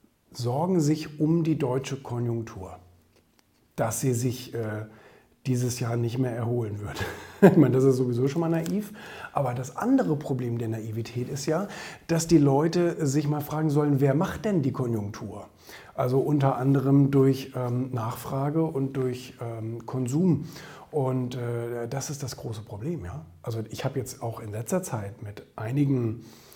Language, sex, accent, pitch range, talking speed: German, male, German, 120-160 Hz, 160 wpm